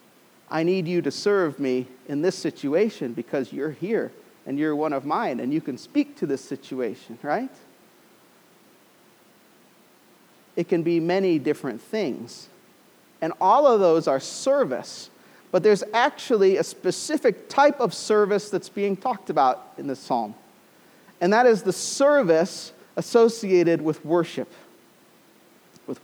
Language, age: English, 40-59